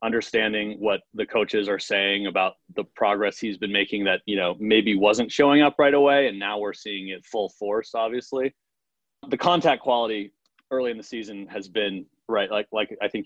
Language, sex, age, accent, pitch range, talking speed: English, male, 30-49, American, 100-120 Hz, 195 wpm